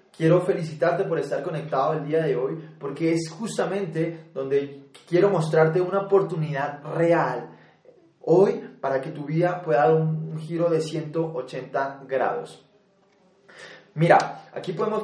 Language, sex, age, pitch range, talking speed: Spanish, male, 20-39, 145-175 Hz, 135 wpm